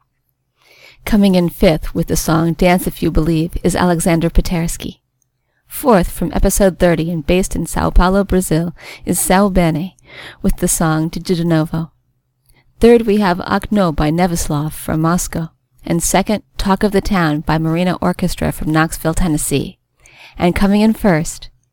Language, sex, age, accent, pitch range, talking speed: English, female, 40-59, American, 150-205 Hz, 155 wpm